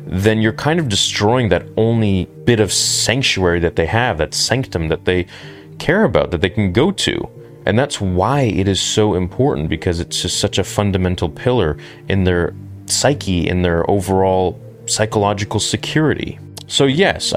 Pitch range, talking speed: 85-115 Hz, 165 wpm